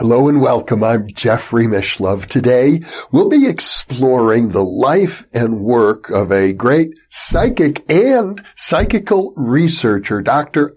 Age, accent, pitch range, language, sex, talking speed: 60-79, American, 115-180 Hz, English, male, 125 wpm